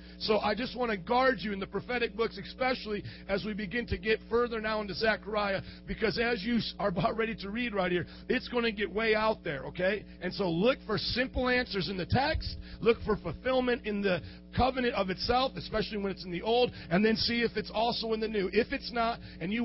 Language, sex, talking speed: English, male, 230 wpm